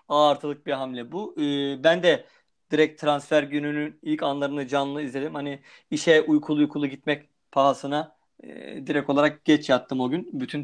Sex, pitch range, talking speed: male, 145-180 Hz, 160 wpm